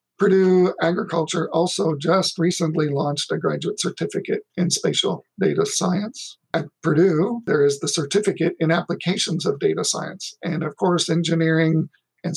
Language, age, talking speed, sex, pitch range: English, 50-69, 140 wpm, male, 155-185 Hz